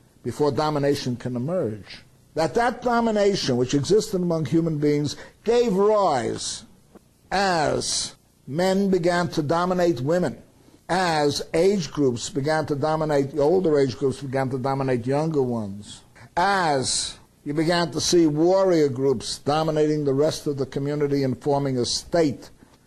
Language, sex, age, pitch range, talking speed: English, male, 60-79, 130-180 Hz, 135 wpm